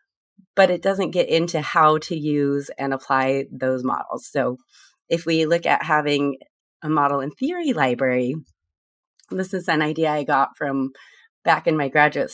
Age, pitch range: 30-49, 140-160 Hz